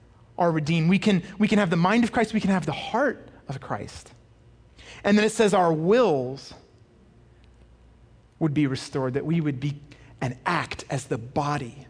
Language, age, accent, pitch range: English, 30-49, American, 140-215 Hz